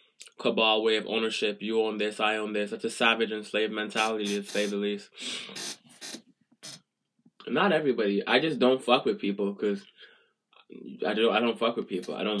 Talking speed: 180 wpm